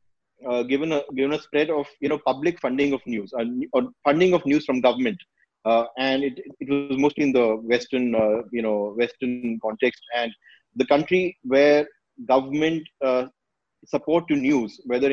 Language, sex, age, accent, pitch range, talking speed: English, male, 30-49, Indian, 125-165 Hz, 175 wpm